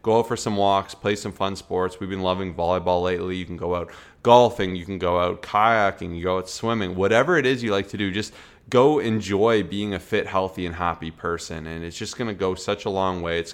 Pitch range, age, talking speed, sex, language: 85-100 Hz, 20-39, 250 wpm, male, English